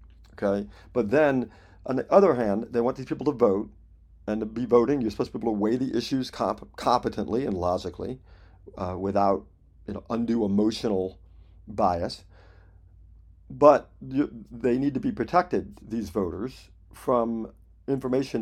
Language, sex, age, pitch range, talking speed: English, male, 50-69, 95-130 Hz, 145 wpm